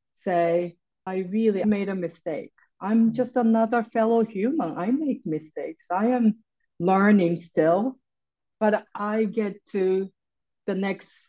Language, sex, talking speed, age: English, female, 130 wpm, 40-59